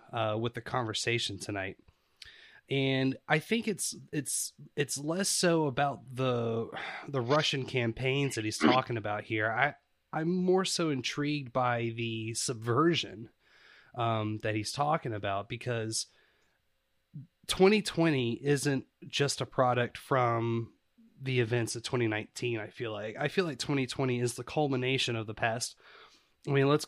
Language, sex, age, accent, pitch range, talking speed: English, male, 30-49, American, 115-140 Hz, 140 wpm